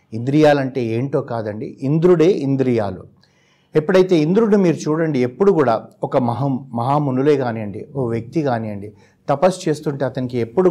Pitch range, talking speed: 115-150 Hz, 125 wpm